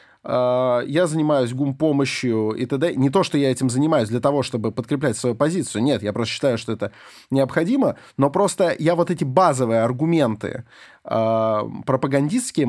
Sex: male